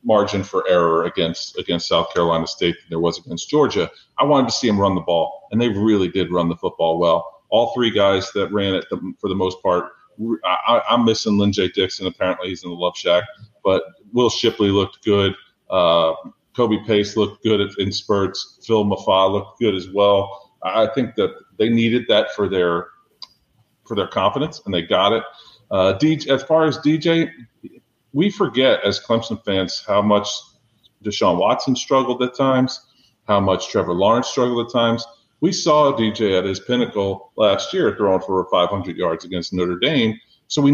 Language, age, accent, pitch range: English, 40-59, American, 100-130 Hz